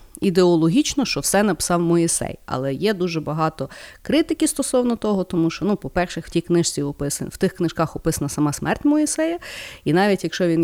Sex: female